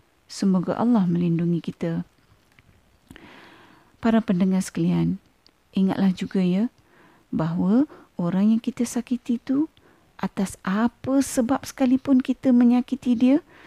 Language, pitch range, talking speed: Malay, 185-255 Hz, 100 wpm